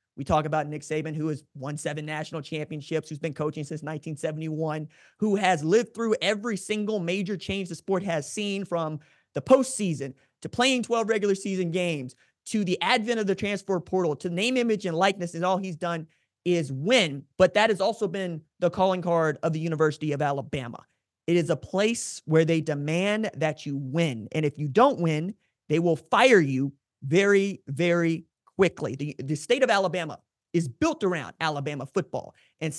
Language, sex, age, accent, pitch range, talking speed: English, male, 30-49, American, 155-195 Hz, 185 wpm